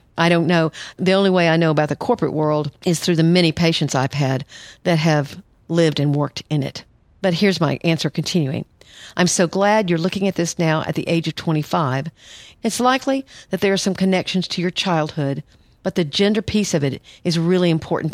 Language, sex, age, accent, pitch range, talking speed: English, female, 50-69, American, 155-190 Hz, 210 wpm